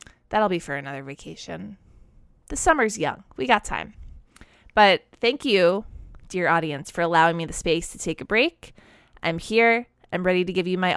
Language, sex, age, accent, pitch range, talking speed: English, female, 20-39, American, 170-215 Hz, 180 wpm